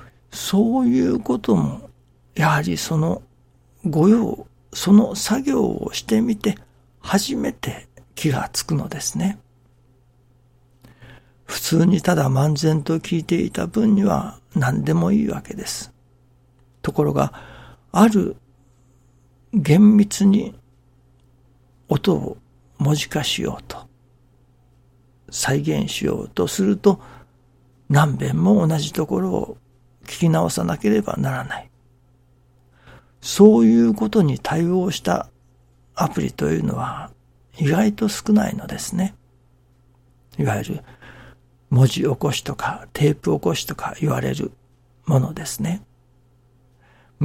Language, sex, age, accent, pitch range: Japanese, male, 60-79, native, 125-175 Hz